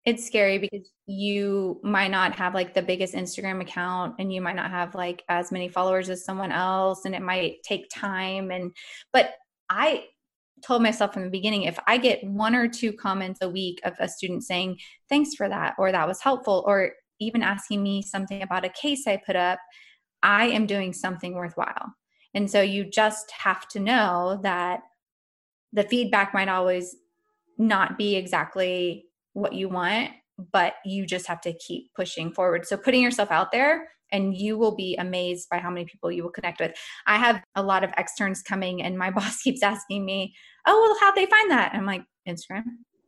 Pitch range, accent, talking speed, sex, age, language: 185-225 Hz, American, 195 wpm, female, 20-39, English